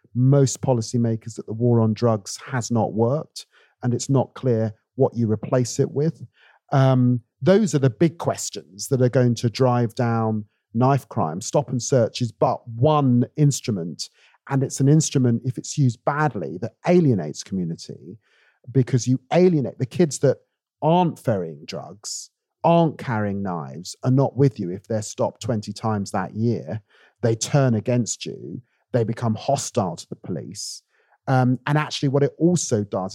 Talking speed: 165 wpm